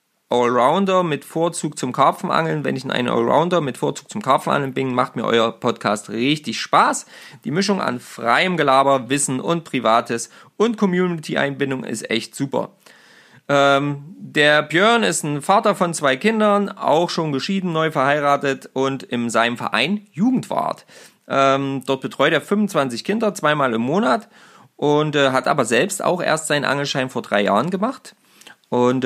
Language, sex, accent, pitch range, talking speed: German, male, German, 120-165 Hz, 155 wpm